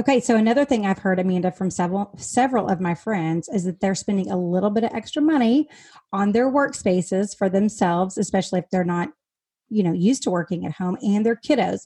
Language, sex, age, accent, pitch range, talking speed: English, female, 30-49, American, 180-225 Hz, 215 wpm